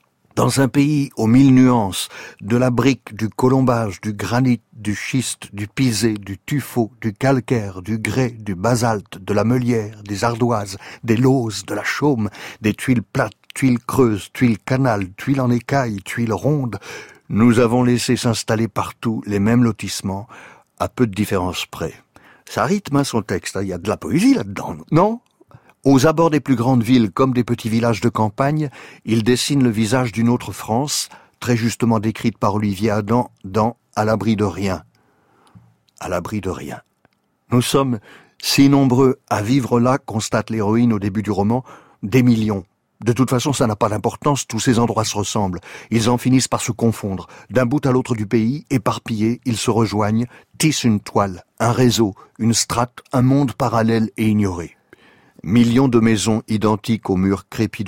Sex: male